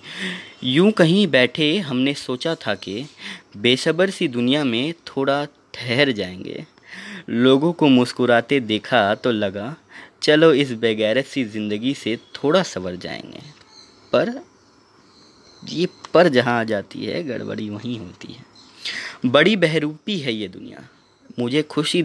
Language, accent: Hindi, native